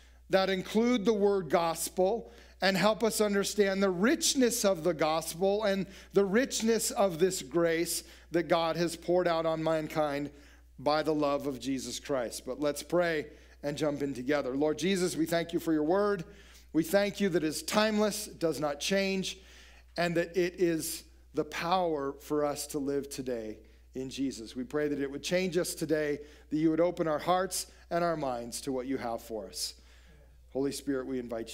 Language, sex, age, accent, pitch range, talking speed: English, male, 40-59, American, 135-185 Hz, 190 wpm